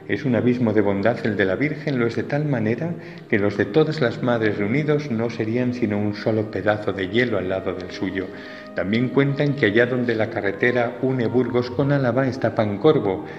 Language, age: Spanish, 40-59